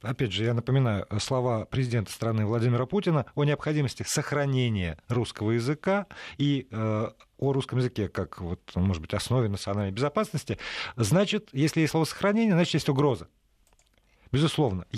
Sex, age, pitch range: male, 40-59, 115-170 Hz